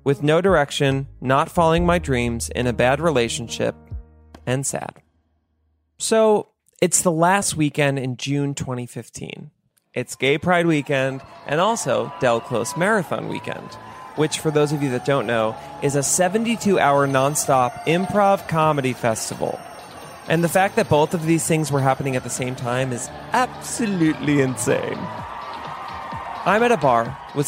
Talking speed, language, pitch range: 150 wpm, English, 125-165 Hz